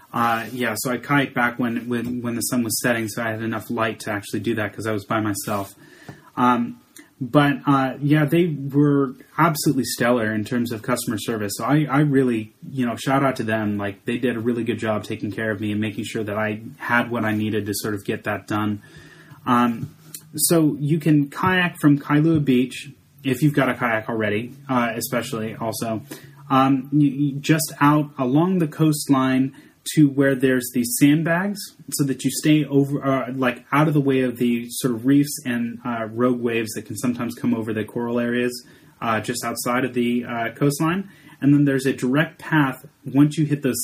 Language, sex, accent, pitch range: English, male, American, 115-145 Hz